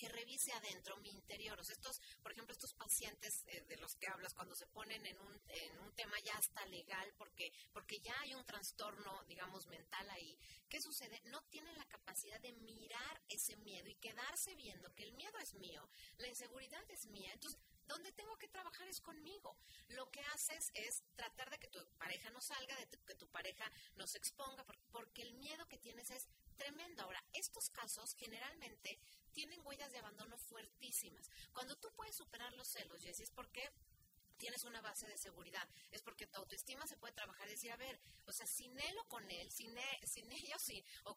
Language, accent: Spanish, Mexican